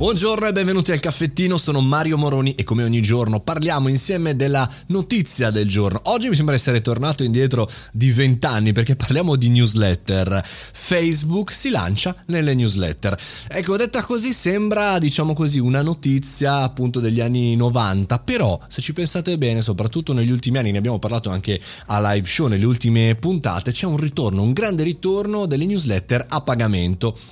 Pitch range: 110-150 Hz